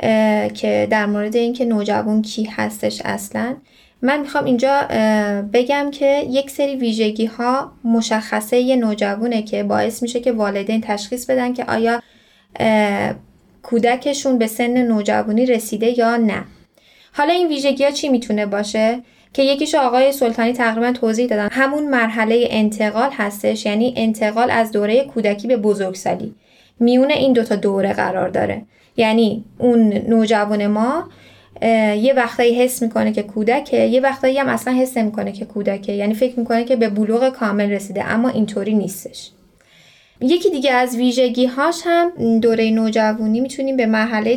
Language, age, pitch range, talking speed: Persian, 10-29, 215-255 Hz, 145 wpm